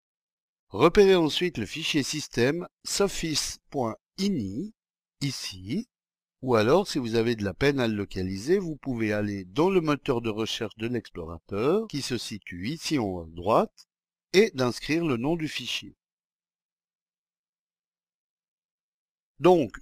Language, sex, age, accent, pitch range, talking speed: French, male, 60-79, French, 105-170 Hz, 130 wpm